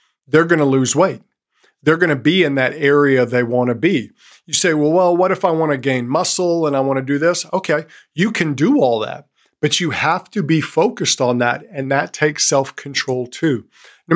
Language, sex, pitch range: English, male, 135-175 Hz